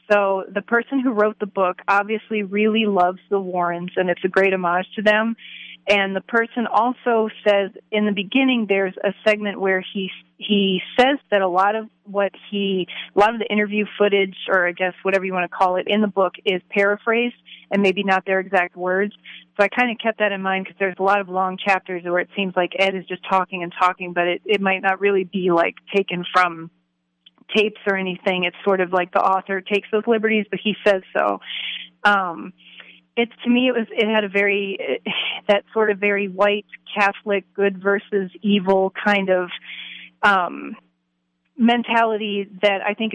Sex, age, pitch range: female, 30-49, 185-210 Hz